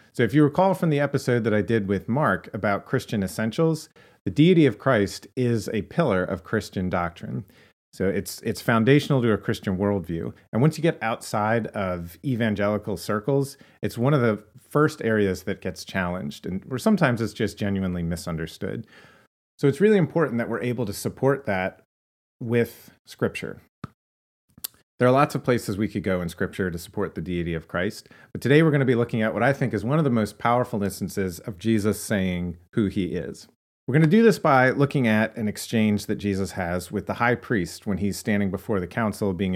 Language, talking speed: English, 200 wpm